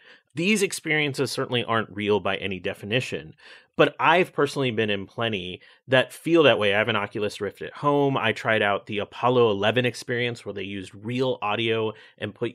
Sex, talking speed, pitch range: male, 185 wpm, 105-135 Hz